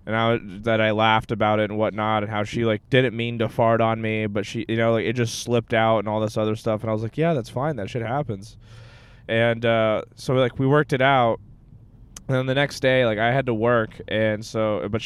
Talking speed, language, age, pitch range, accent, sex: 260 wpm, English, 20-39, 110-130 Hz, American, male